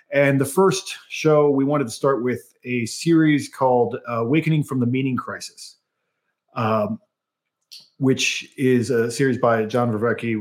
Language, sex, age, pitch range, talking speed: English, male, 40-59, 110-140 Hz, 150 wpm